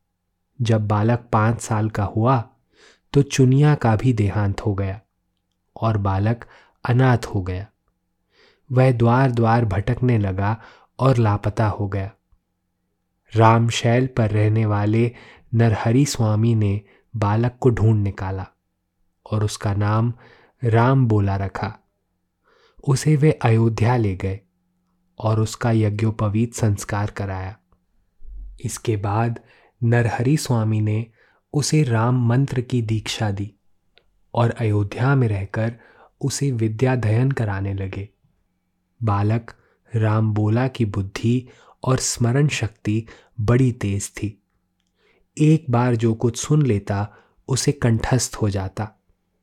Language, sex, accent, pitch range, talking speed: Hindi, male, native, 100-120 Hz, 115 wpm